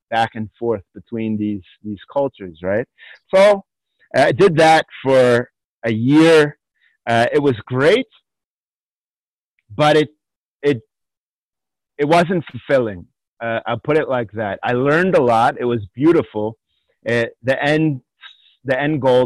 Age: 30-49